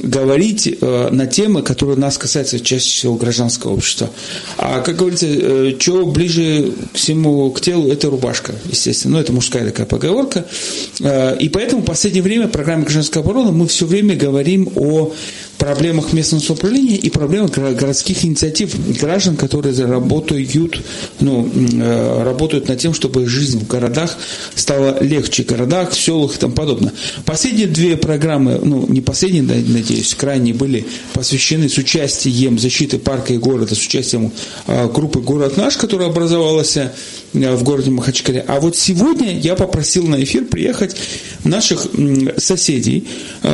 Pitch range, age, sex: 125-170 Hz, 40-59, male